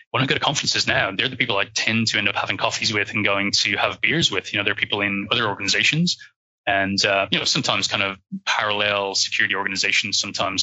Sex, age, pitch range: male, 20-39, 100-115 Hz